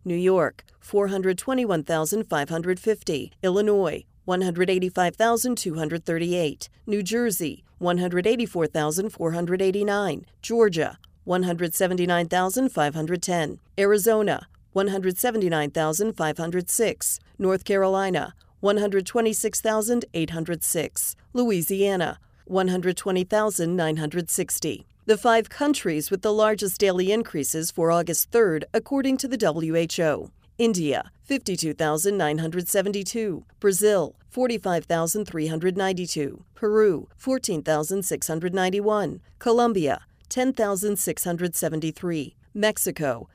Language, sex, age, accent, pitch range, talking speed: English, female, 40-59, American, 170-215 Hz, 55 wpm